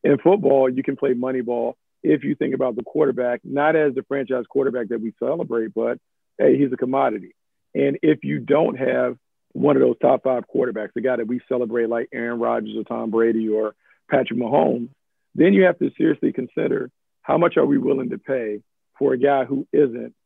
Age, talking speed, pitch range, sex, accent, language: 50-69, 205 wpm, 120-150 Hz, male, American, English